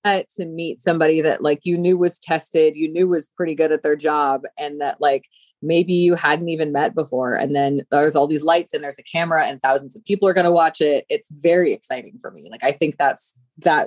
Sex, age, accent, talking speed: female, 20-39, American, 240 wpm